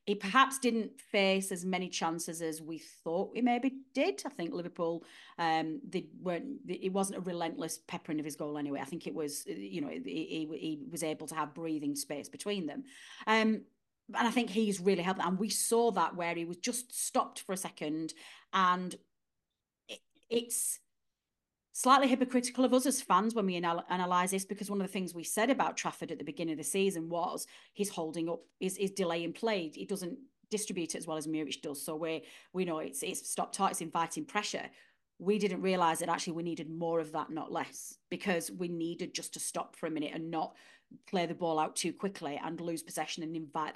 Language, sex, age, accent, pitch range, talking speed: English, female, 30-49, British, 160-210 Hz, 210 wpm